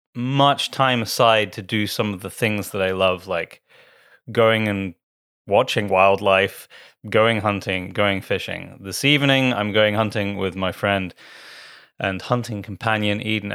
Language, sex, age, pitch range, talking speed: English, male, 30-49, 100-120 Hz, 145 wpm